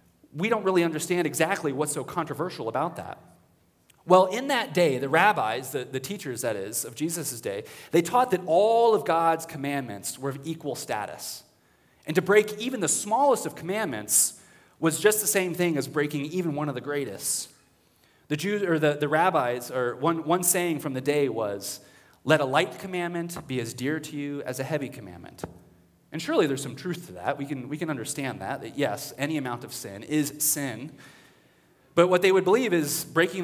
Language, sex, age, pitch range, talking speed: English, male, 30-49, 135-180 Hz, 195 wpm